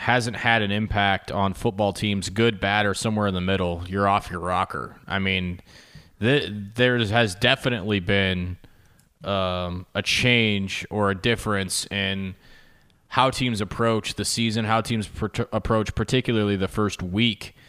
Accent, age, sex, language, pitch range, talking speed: American, 20-39, male, English, 100-120 Hz, 145 wpm